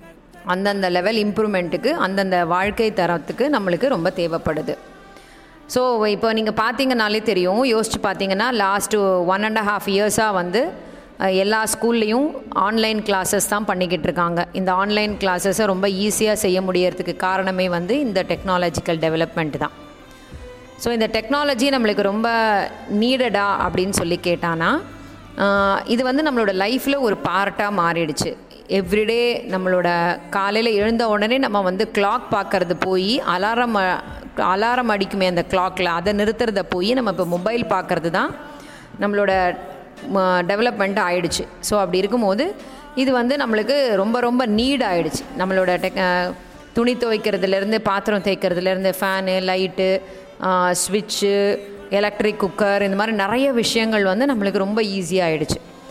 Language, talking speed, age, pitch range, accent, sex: Tamil, 120 wpm, 20-39, 185-220 Hz, native, female